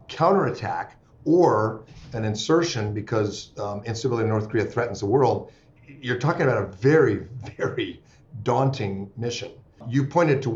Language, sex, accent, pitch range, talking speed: English, male, American, 110-135 Hz, 140 wpm